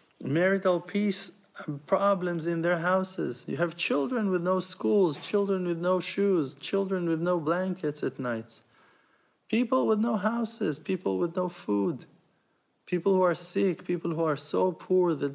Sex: male